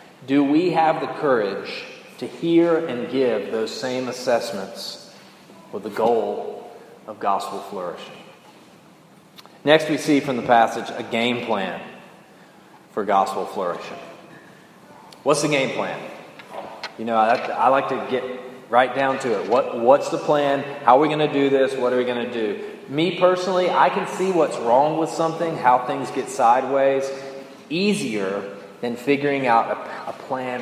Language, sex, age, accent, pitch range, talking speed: English, male, 30-49, American, 120-160 Hz, 155 wpm